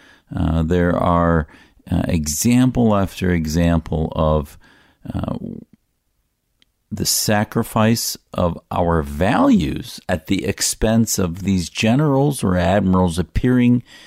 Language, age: English, 50-69